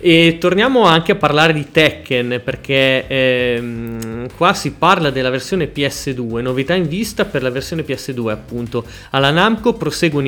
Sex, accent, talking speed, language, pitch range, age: male, native, 150 wpm, Italian, 130-170 Hz, 30-49